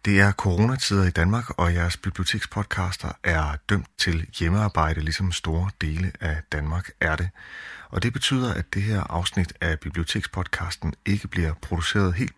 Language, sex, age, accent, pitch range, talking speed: Danish, male, 30-49, native, 85-100 Hz, 155 wpm